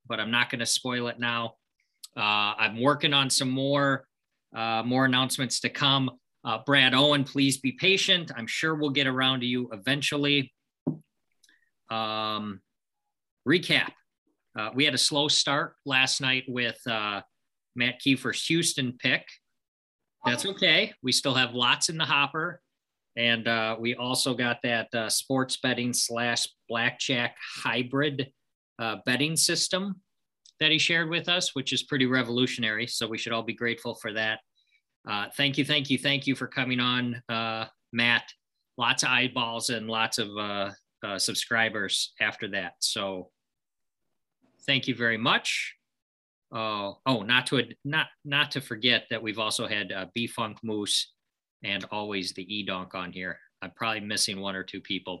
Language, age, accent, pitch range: English, 40-59, American, 115-140 Hz